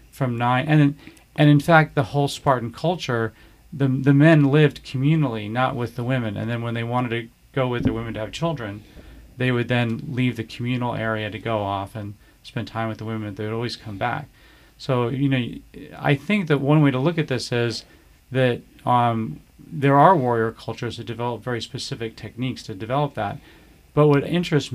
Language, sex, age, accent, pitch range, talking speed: English, male, 40-59, American, 115-140 Hz, 200 wpm